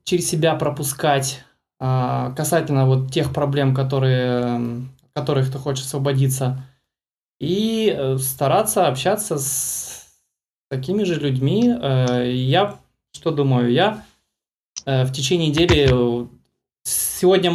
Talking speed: 90 wpm